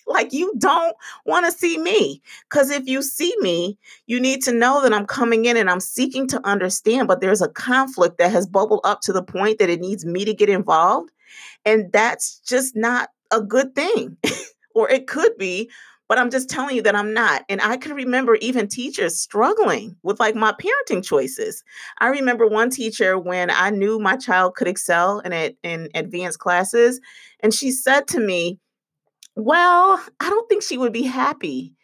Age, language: 40-59, English